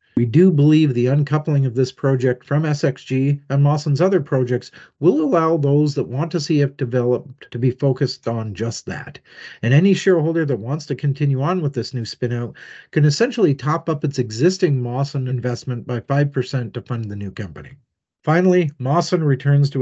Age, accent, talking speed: 50-69, American, 180 wpm